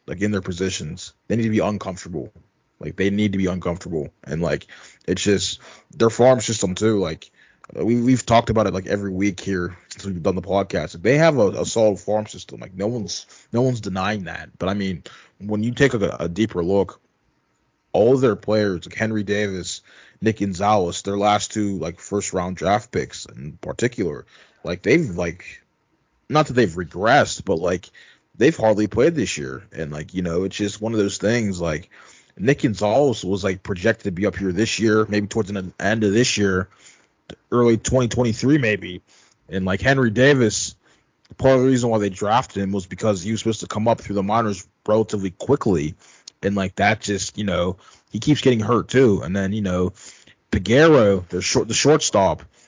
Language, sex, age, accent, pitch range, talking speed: English, male, 20-39, American, 95-115 Hz, 195 wpm